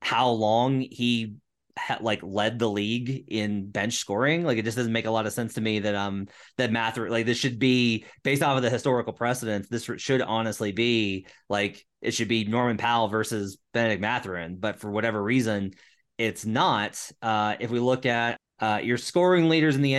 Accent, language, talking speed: American, English, 200 wpm